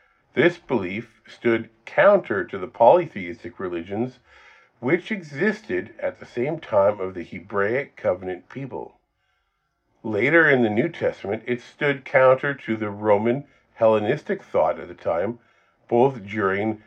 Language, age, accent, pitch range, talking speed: English, 50-69, American, 90-125 Hz, 130 wpm